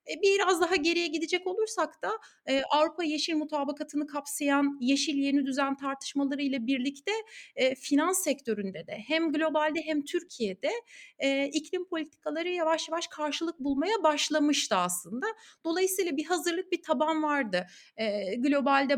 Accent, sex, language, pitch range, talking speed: native, female, Turkish, 255-345 Hz, 120 wpm